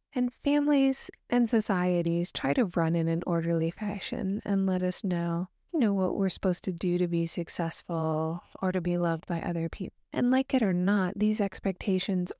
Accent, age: American, 30-49